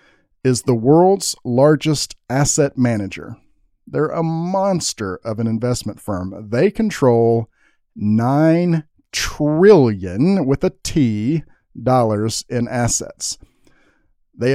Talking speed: 100 wpm